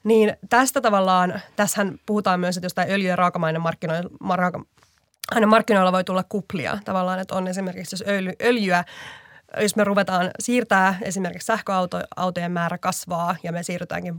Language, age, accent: Finnish, 20-39, native